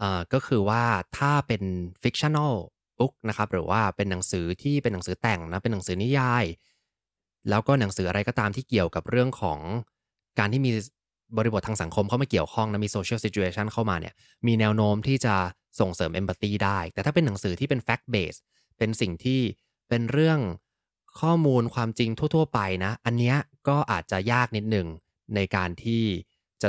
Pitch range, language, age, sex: 95-120 Hz, English, 20-39, male